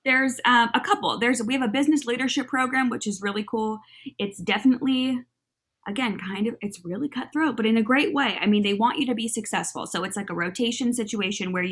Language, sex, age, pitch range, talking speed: English, female, 20-39, 190-250 Hz, 220 wpm